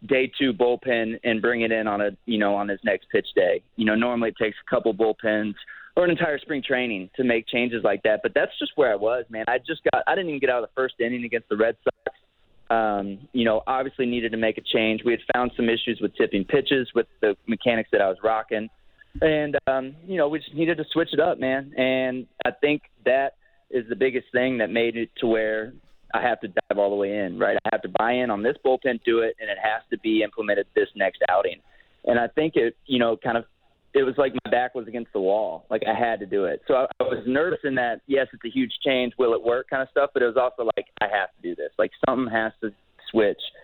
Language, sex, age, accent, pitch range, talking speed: English, male, 20-39, American, 110-130 Hz, 260 wpm